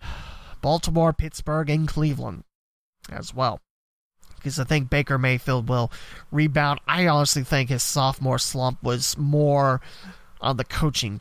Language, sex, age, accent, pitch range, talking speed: English, male, 30-49, American, 130-160 Hz, 130 wpm